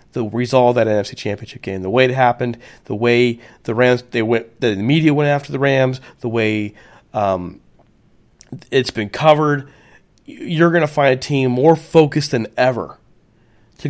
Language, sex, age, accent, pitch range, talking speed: English, male, 40-59, American, 115-135 Hz, 160 wpm